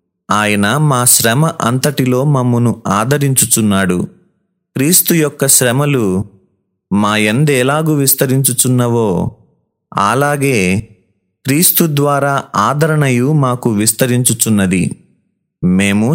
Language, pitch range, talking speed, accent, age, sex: Telugu, 110-145 Hz, 70 wpm, native, 30-49, male